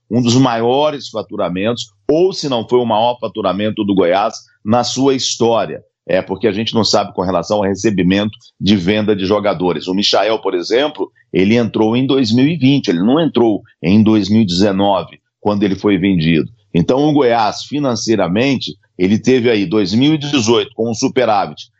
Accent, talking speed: Brazilian, 160 wpm